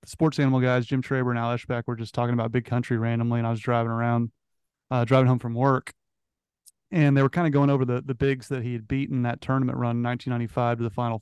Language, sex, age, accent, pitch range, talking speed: English, male, 30-49, American, 120-140 Hz, 245 wpm